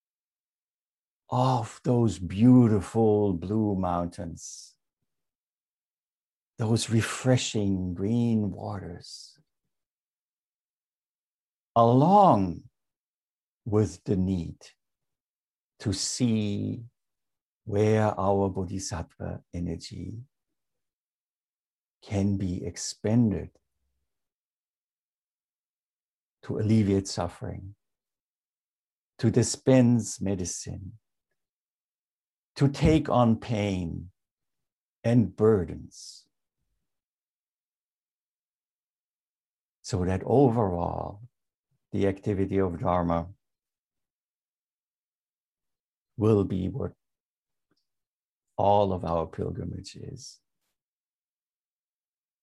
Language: English